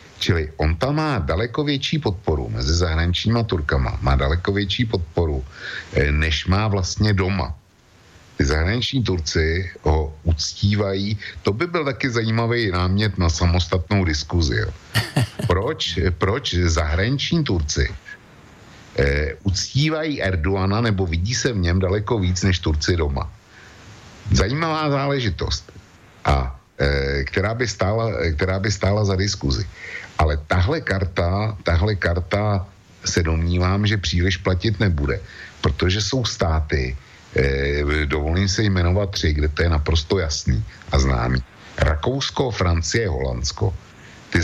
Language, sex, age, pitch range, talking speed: Slovak, male, 60-79, 80-105 Hz, 115 wpm